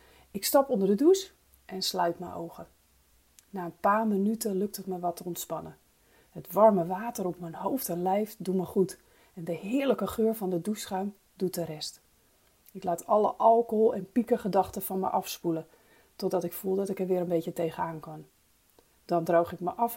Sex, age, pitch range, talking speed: female, 30-49, 170-230 Hz, 200 wpm